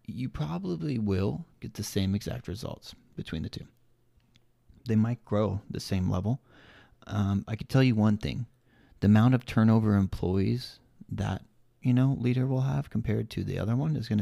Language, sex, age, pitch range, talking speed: English, male, 30-49, 100-125 Hz, 175 wpm